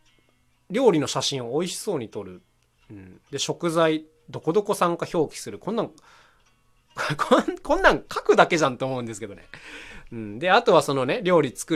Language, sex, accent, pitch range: Japanese, male, native, 115-185 Hz